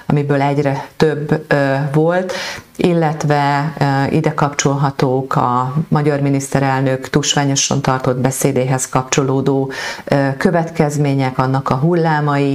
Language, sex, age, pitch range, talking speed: Hungarian, female, 40-59, 130-150 Hz, 100 wpm